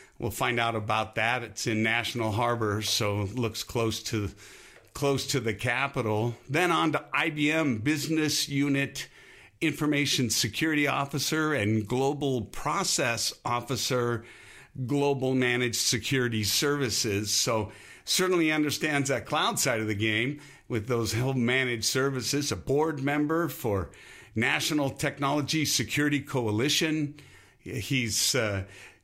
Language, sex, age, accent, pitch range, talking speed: English, male, 50-69, American, 110-145 Hz, 120 wpm